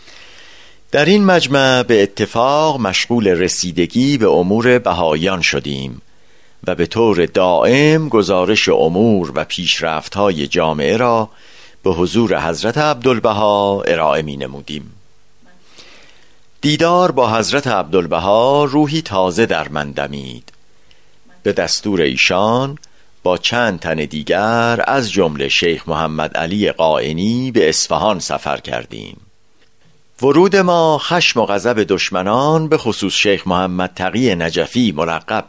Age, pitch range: 50-69, 90-130 Hz